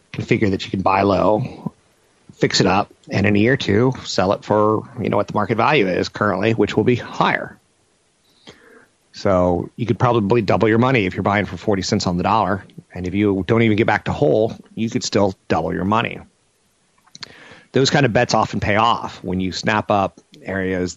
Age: 40-59